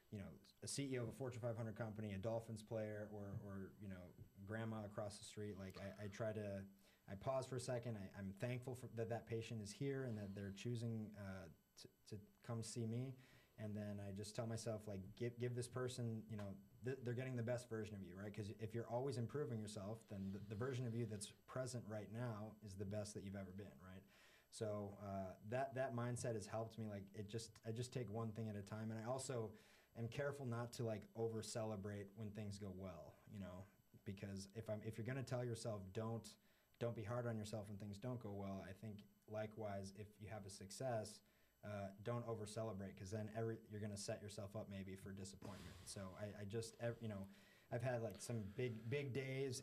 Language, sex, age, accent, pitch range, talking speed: English, male, 30-49, American, 100-120 Hz, 225 wpm